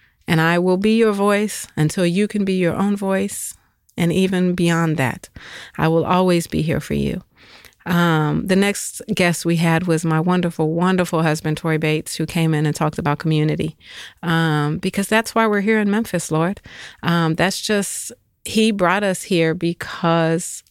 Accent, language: American, English